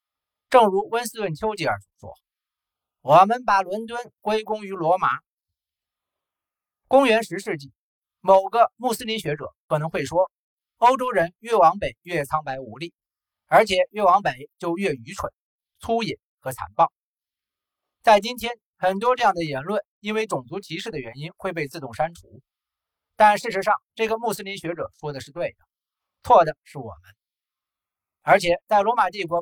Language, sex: Chinese, male